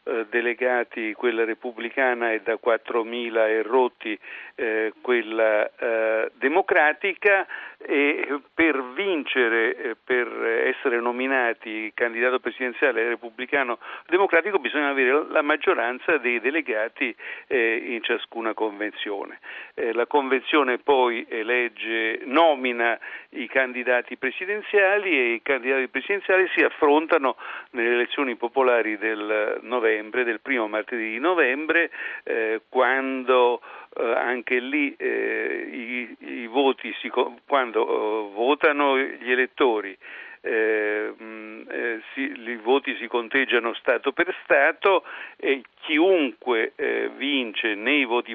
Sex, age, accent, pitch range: male, 50-69, native, 115-155 Hz